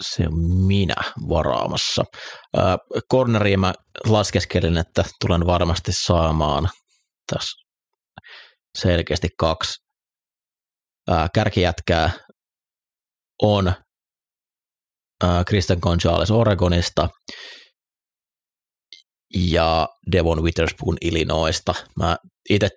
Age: 30-49